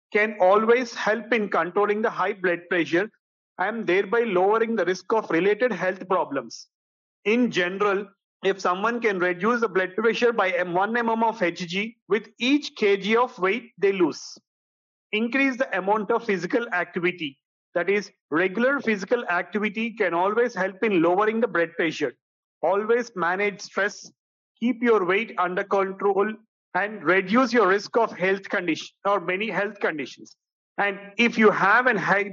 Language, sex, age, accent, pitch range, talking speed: English, male, 40-59, Indian, 185-230 Hz, 155 wpm